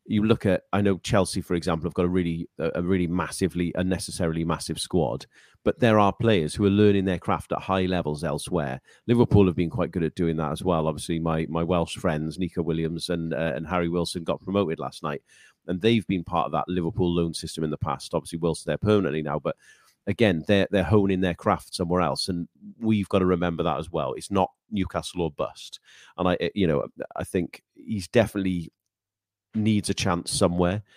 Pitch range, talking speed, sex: 80-100 Hz, 210 wpm, male